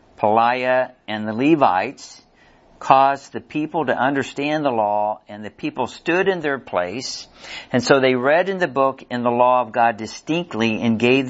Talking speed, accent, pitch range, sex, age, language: 175 wpm, American, 110-130 Hz, male, 50-69, English